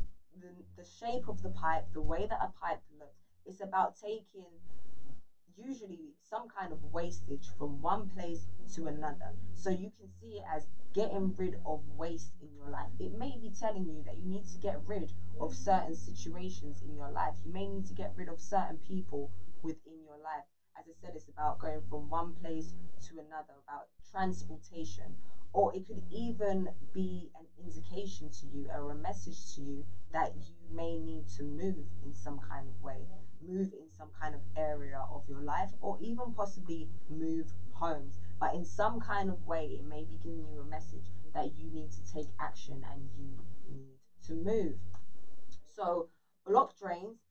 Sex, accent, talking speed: female, British, 185 wpm